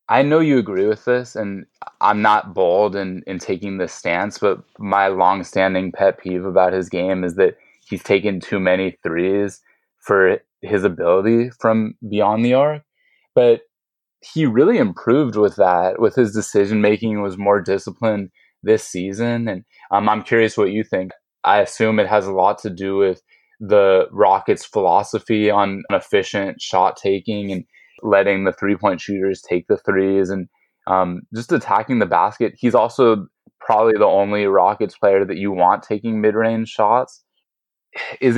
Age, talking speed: 20-39, 160 wpm